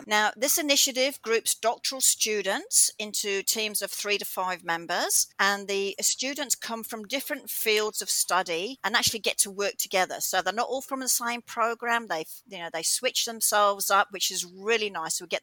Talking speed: 190 wpm